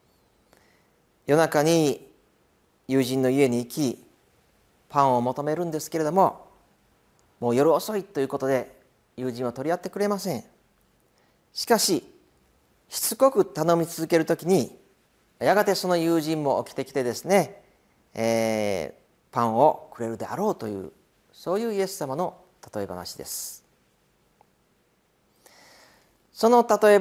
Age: 40-59